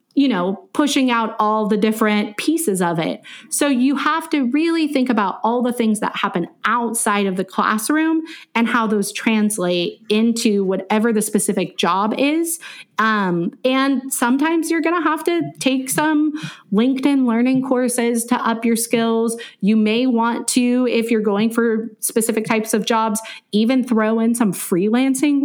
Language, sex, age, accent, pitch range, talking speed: English, female, 30-49, American, 210-260 Hz, 165 wpm